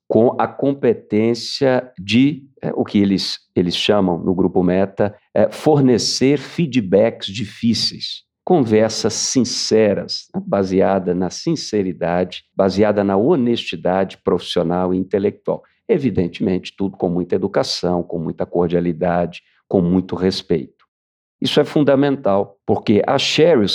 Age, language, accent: 50-69, Portuguese, Brazilian